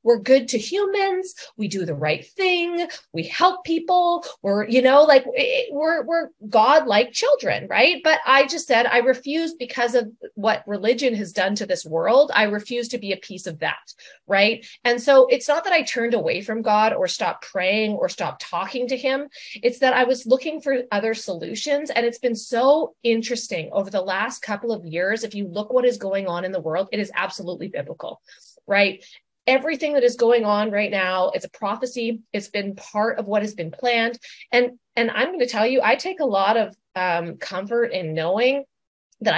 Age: 30-49